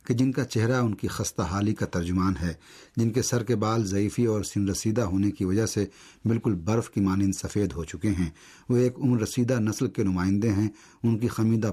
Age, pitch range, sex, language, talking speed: 50-69, 95-115 Hz, male, Urdu, 220 wpm